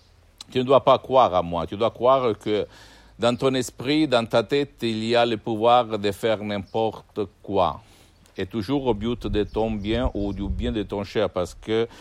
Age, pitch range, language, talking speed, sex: 60-79, 95-115 Hz, Italian, 205 wpm, male